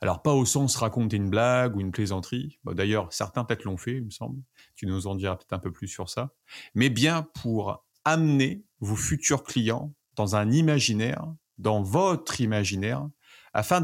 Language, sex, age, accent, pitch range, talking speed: French, male, 30-49, French, 105-140 Hz, 185 wpm